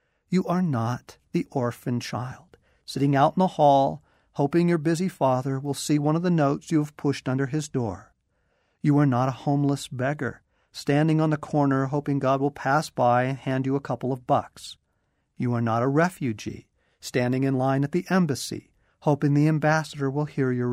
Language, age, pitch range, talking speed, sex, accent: English, 50-69, 120-150 Hz, 190 wpm, male, American